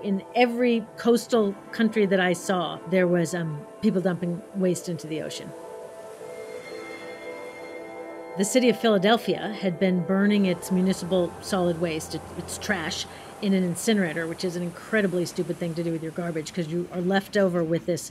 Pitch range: 180-210 Hz